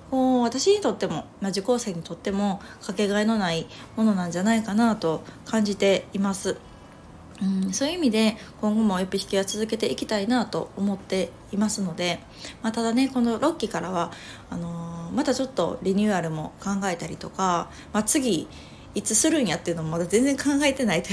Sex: female